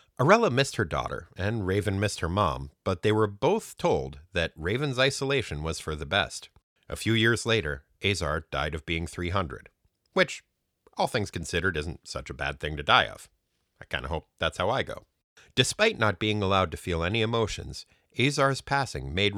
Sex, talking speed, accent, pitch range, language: male, 190 wpm, American, 80-110 Hz, English